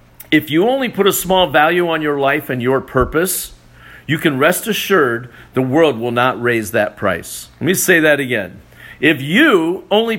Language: English